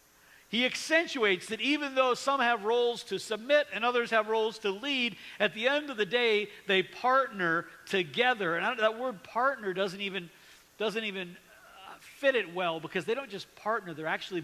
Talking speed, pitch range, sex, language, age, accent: 180 wpm, 155-225 Hz, male, English, 50-69, American